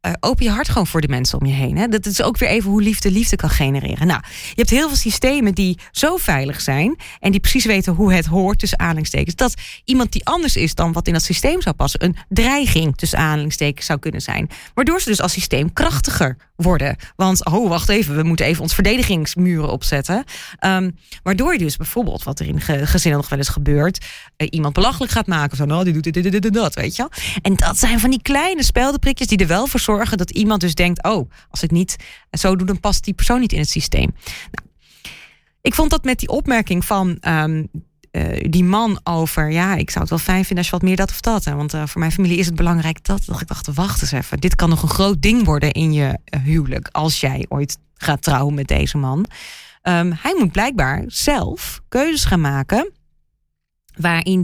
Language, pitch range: Dutch, 155-210 Hz